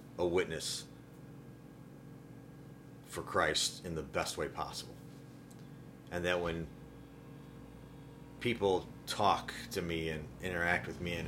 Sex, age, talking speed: male, 30-49, 110 wpm